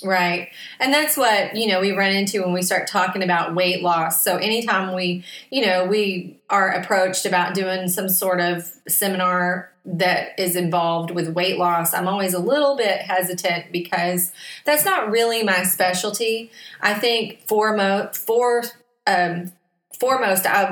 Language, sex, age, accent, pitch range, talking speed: English, female, 30-49, American, 180-215 Hz, 160 wpm